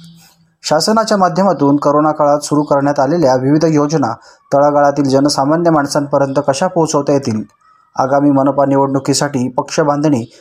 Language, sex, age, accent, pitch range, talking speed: Marathi, male, 20-39, native, 135-160 Hz, 105 wpm